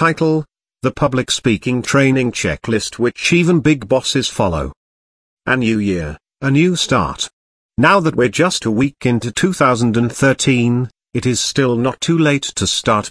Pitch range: 115-145 Hz